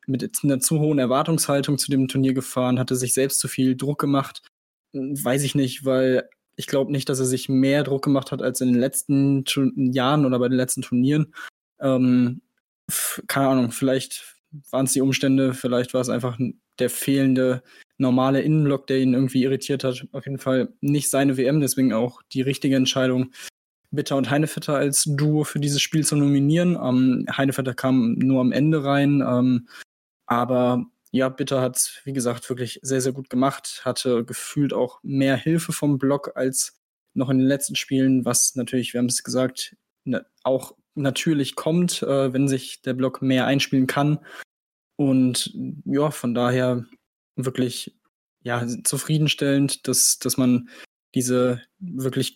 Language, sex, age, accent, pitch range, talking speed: German, male, 10-29, German, 130-140 Hz, 170 wpm